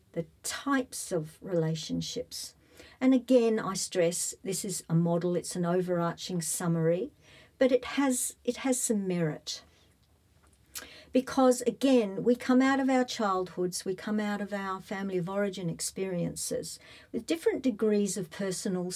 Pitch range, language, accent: 175-235 Hz, English, Australian